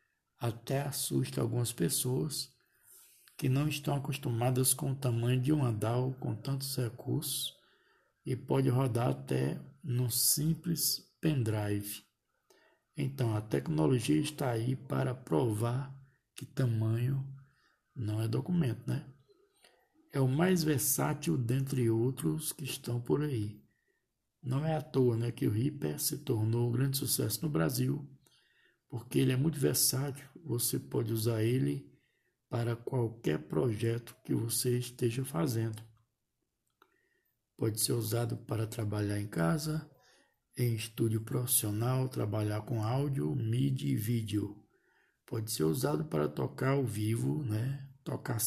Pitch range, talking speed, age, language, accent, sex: 115-140 Hz, 130 wpm, 60-79, Portuguese, Brazilian, male